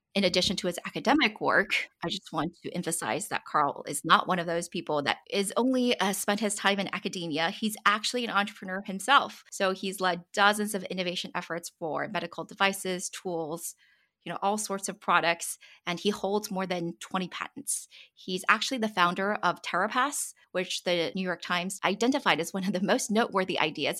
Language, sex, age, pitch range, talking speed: English, female, 20-39, 170-205 Hz, 190 wpm